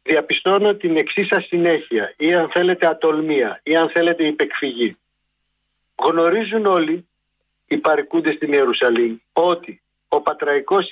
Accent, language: native, Greek